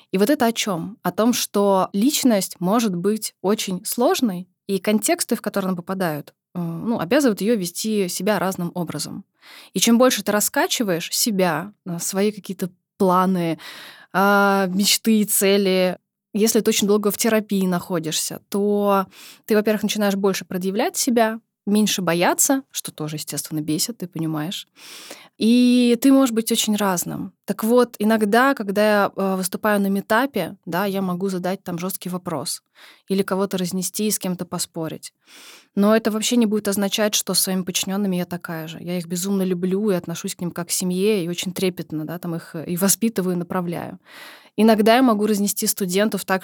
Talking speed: 165 wpm